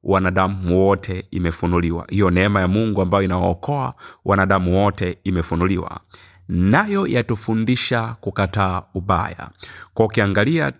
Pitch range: 95-115 Hz